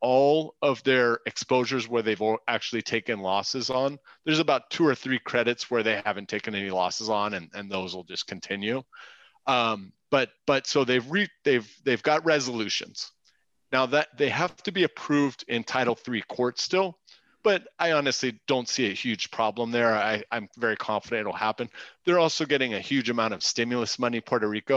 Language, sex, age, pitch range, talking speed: English, male, 30-49, 115-145 Hz, 185 wpm